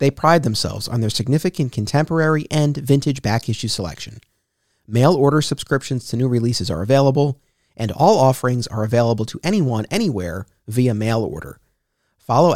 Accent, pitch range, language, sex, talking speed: American, 110-150 Hz, English, male, 155 wpm